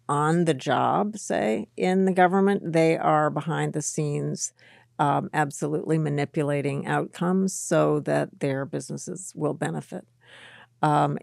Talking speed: 125 wpm